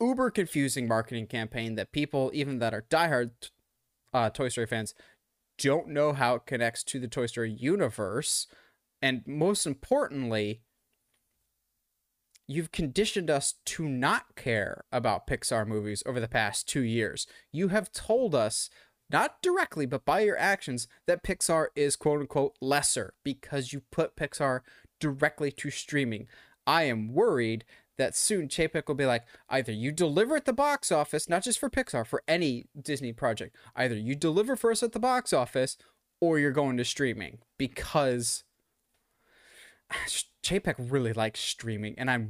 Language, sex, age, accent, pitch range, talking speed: English, male, 20-39, American, 120-170 Hz, 155 wpm